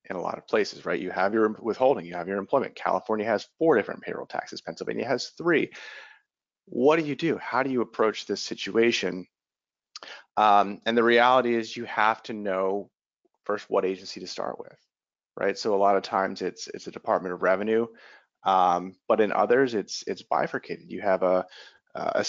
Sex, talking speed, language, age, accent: male, 190 wpm, English, 30-49, American